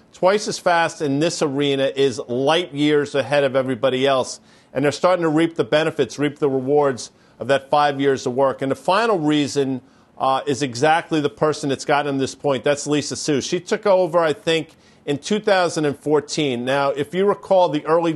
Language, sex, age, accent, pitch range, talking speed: English, male, 50-69, American, 140-165 Hz, 190 wpm